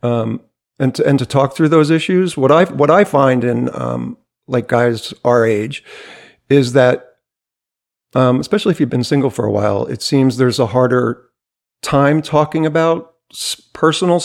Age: 50-69